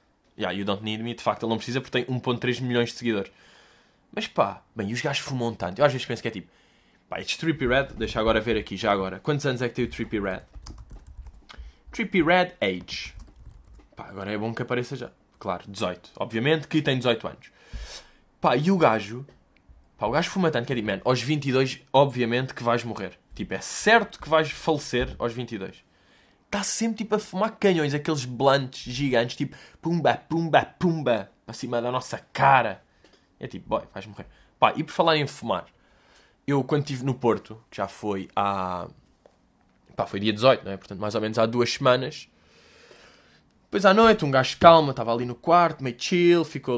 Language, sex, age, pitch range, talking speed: Portuguese, male, 20-39, 110-145 Hz, 205 wpm